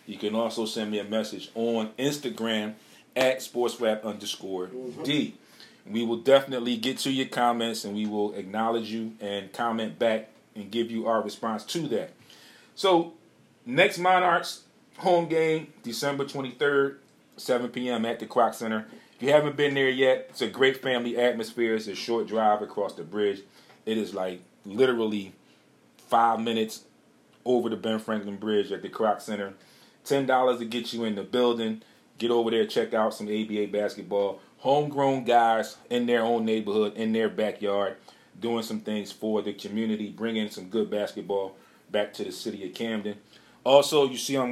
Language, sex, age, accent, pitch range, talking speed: English, male, 40-59, American, 105-125 Hz, 170 wpm